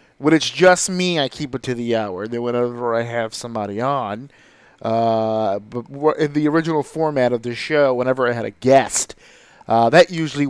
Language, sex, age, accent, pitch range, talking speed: English, male, 30-49, American, 120-145 Hz, 195 wpm